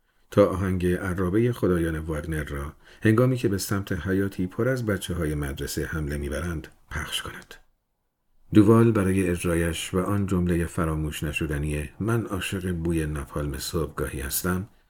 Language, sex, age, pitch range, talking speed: Persian, male, 50-69, 75-100 Hz, 135 wpm